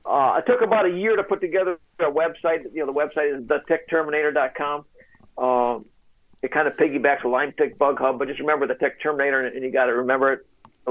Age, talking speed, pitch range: 50-69, 230 wpm, 140-185 Hz